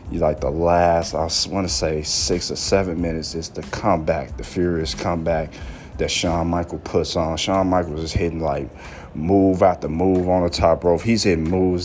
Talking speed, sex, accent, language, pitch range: 185 wpm, male, American, English, 80-95 Hz